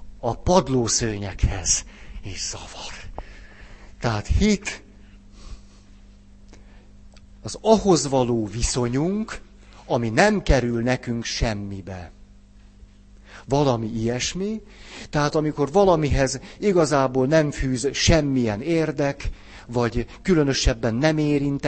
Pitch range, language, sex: 115-170 Hz, Hungarian, male